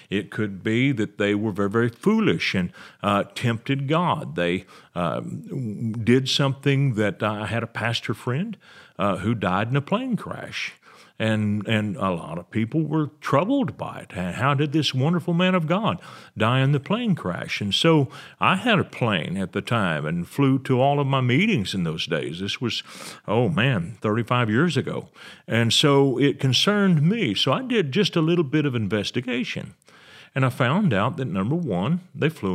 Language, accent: English, American